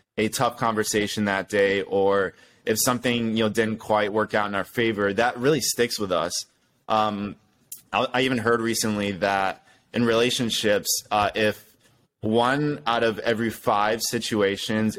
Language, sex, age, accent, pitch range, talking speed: English, male, 20-39, American, 100-120 Hz, 155 wpm